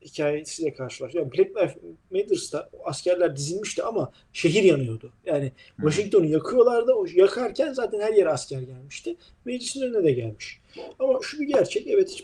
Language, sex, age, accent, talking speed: Turkish, male, 40-59, native, 145 wpm